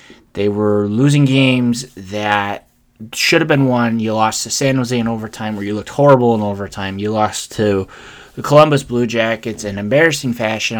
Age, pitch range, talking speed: 20-39, 110-135 Hz, 180 wpm